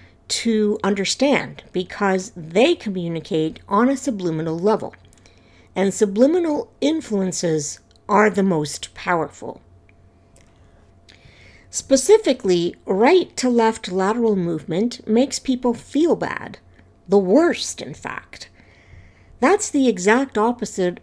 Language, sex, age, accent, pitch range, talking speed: English, female, 60-79, American, 165-245 Hz, 95 wpm